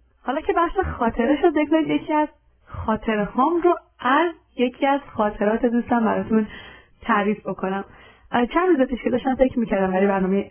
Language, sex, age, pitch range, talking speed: Persian, female, 30-49, 195-260 Hz, 150 wpm